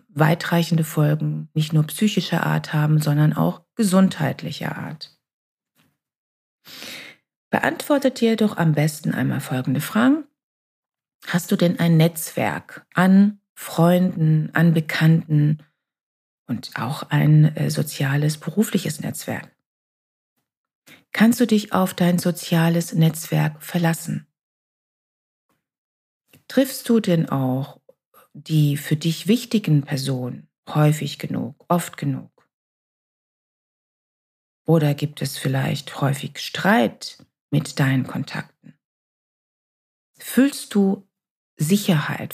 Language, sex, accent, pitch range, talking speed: German, female, German, 150-200 Hz, 95 wpm